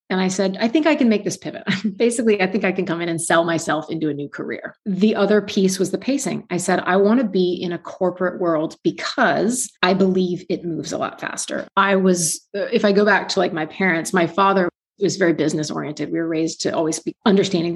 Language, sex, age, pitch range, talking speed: English, female, 30-49, 165-200 Hz, 240 wpm